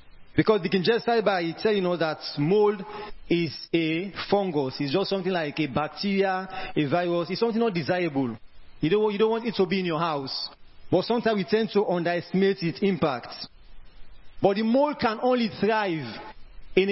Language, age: English, 40-59